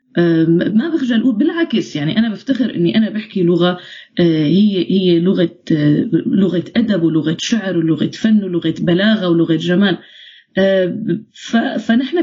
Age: 30-49